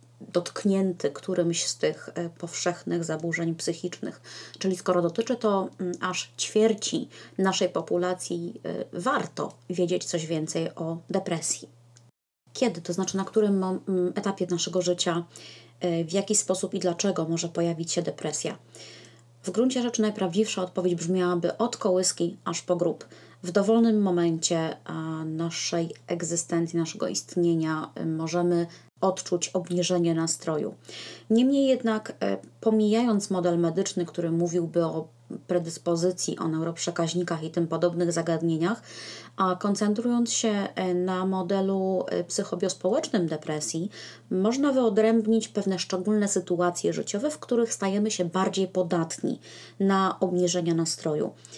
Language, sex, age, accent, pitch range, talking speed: Polish, female, 20-39, native, 170-195 Hz, 115 wpm